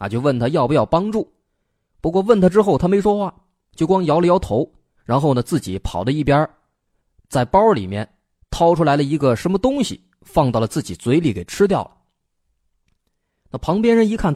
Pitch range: 105-180 Hz